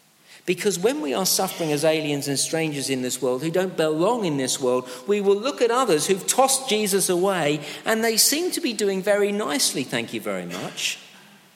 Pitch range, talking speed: 130-185 Hz, 205 wpm